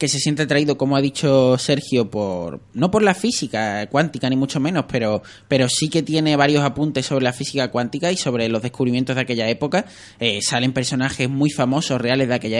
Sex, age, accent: male, 20-39, Spanish